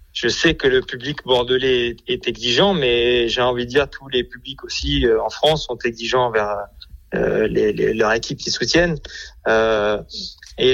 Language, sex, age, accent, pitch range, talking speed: French, male, 30-49, French, 115-155 Hz, 185 wpm